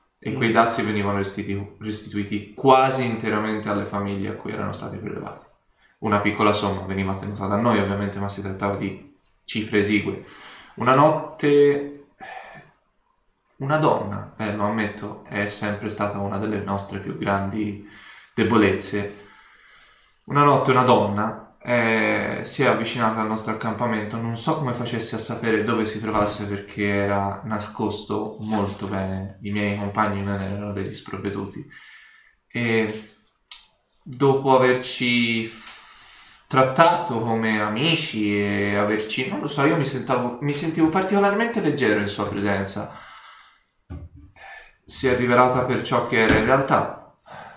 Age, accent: 20-39, native